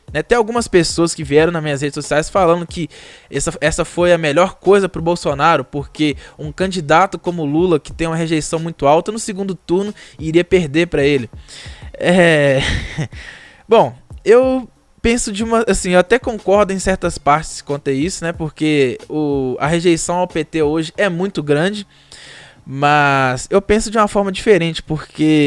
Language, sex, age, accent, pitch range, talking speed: Portuguese, male, 10-29, Brazilian, 150-195 Hz, 170 wpm